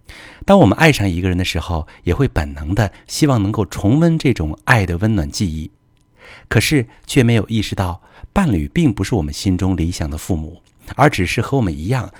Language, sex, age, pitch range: Chinese, male, 50-69, 90-125 Hz